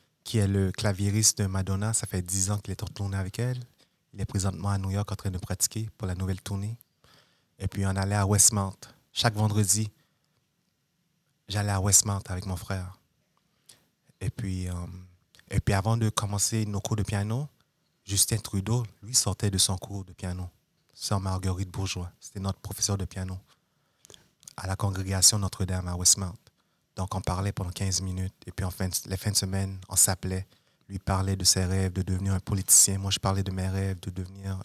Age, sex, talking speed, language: 30-49, male, 190 wpm, French